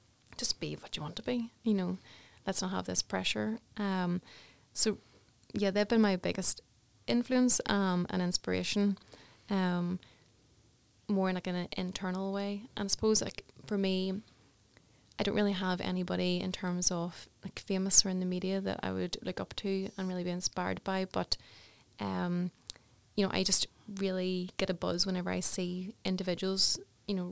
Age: 20-39